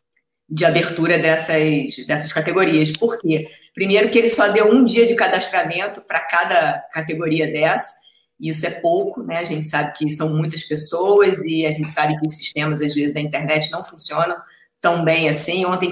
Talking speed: 185 wpm